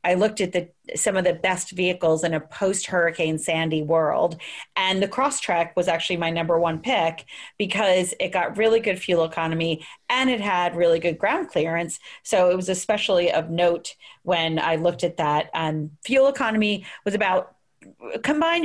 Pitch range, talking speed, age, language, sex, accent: 165-205 Hz, 175 wpm, 40-59, English, female, American